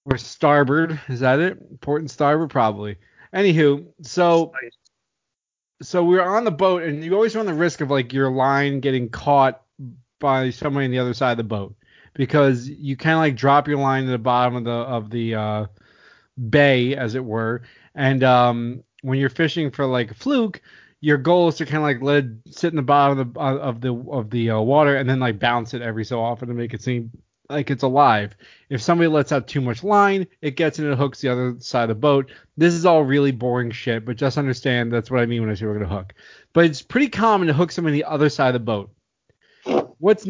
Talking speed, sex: 225 wpm, male